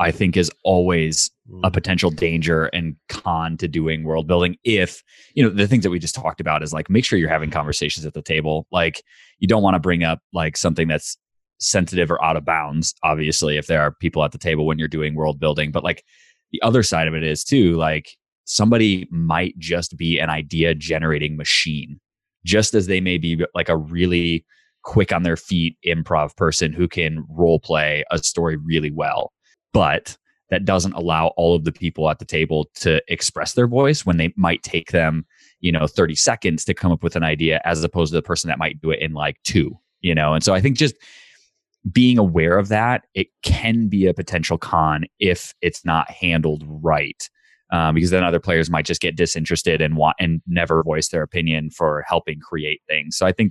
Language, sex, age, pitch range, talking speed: English, male, 20-39, 80-90 Hz, 210 wpm